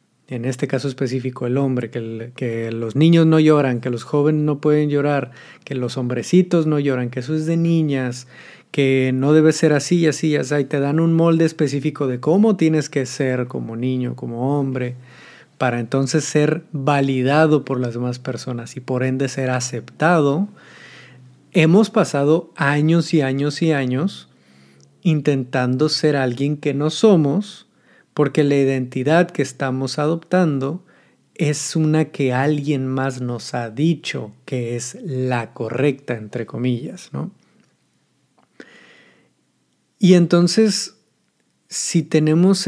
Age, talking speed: 30-49, 140 wpm